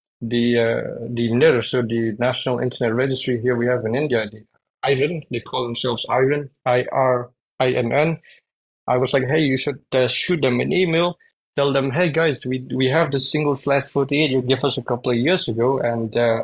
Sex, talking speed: male, 210 wpm